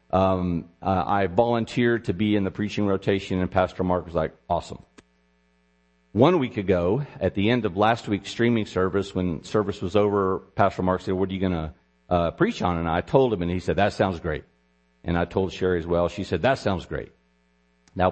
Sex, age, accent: male, 50-69, American